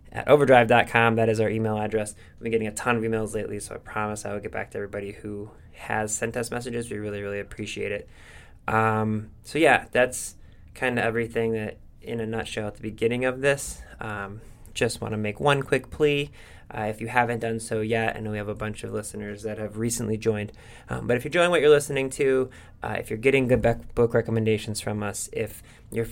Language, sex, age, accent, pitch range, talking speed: English, male, 20-39, American, 110-120 Hz, 225 wpm